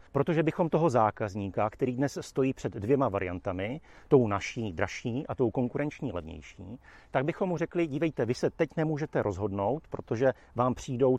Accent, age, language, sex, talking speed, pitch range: native, 40-59, Czech, male, 160 wpm, 110-155 Hz